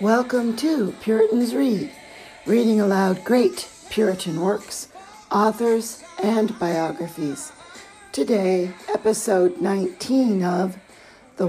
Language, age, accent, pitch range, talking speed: English, 60-79, American, 160-225 Hz, 90 wpm